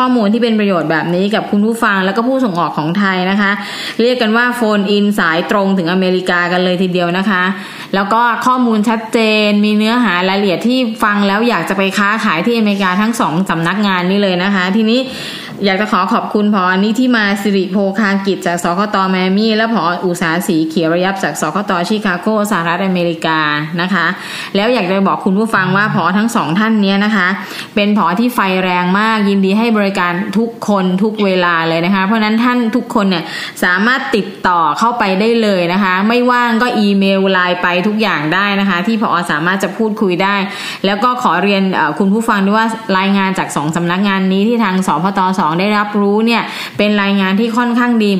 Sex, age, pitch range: female, 20-39, 185-225 Hz